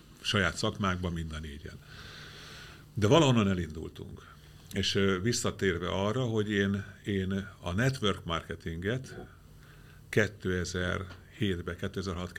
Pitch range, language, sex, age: 85-100 Hz, Hungarian, male, 50-69